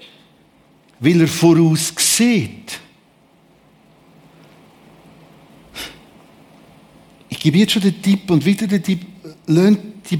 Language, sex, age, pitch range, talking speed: German, male, 60-79, 155-205 Hz, 95 wpm